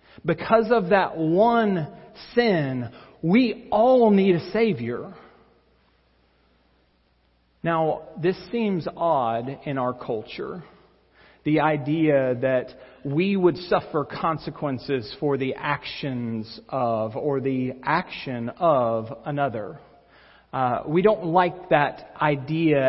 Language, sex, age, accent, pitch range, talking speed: English, male, 40-59, American, 140-200 Hz, 100 wpm